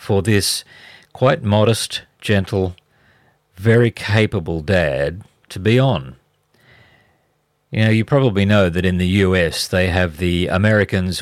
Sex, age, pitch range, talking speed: male, 50-69, 90-115 Hz, 130 wpm